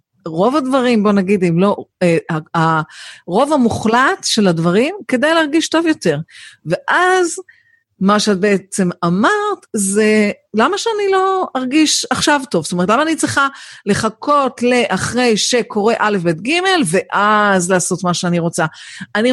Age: 50-69